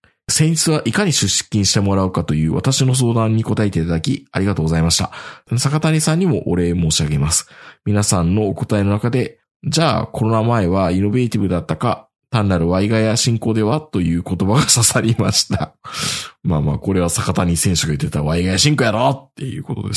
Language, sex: Japanese, male